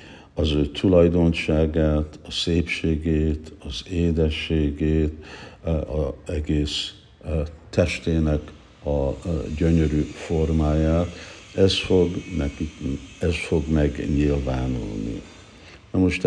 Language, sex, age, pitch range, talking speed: Hungarian, male, 60-79, 75-95 Hz, 80 wpm